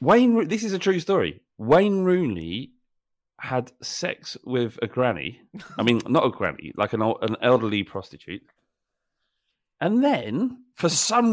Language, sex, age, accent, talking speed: English, male, 40-59, British, 150 wpm